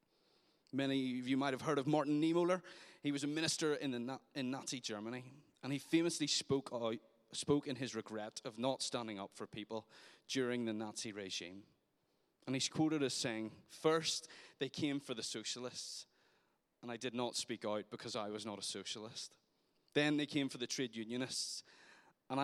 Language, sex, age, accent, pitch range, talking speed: English, male, 30-49, British, 120-150 Hz, 175 wpm